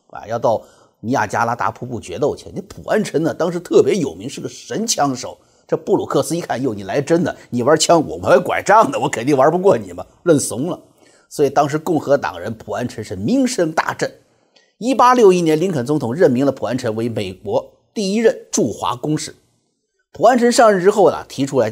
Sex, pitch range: male, 140-235 Hz